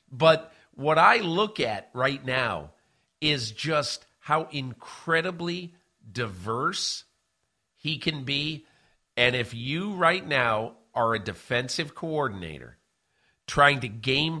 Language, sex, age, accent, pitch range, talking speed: English, male, 50-69, American, 105-150 Hz, 115 wpm